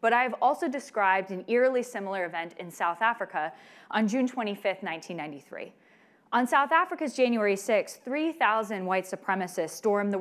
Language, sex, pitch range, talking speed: English, female, 180-225 Hz, 155 wpm